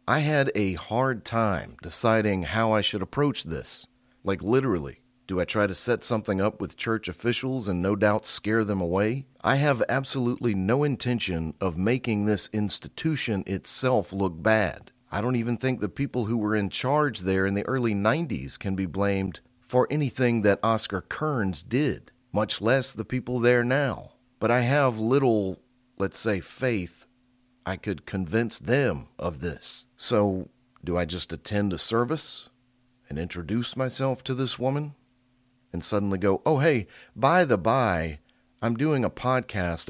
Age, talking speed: 40-59, 165 wpm